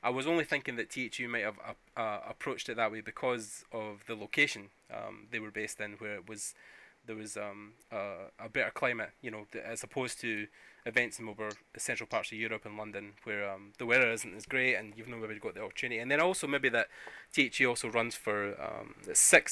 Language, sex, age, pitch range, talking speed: English, male, 20-39, 105-120 Hz, 230 wpm